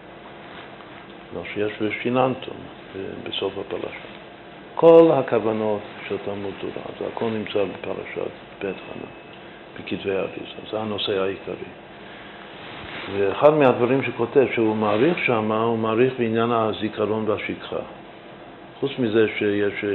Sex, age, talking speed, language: male, 50-69, 100 wpm, Hebrew